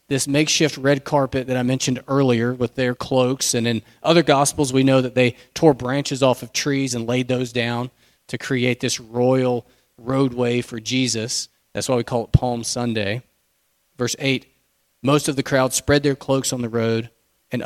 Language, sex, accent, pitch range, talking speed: English, male, American, 120-145 Hz, 185 wpm